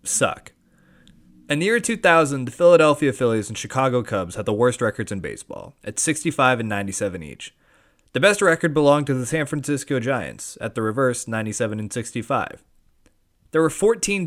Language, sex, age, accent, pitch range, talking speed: English, male, 20-39, American, 115-160 Hz, 170 wpm